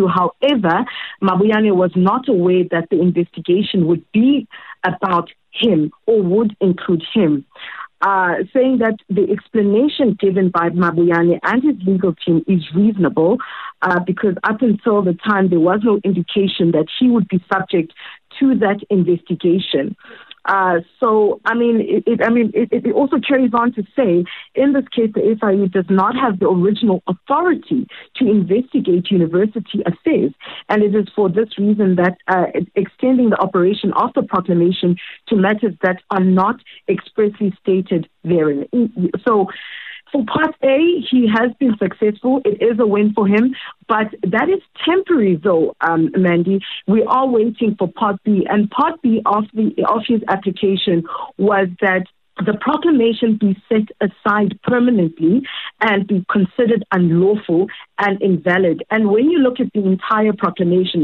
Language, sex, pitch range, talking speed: English, female, 185-230 Hz, 155 wpm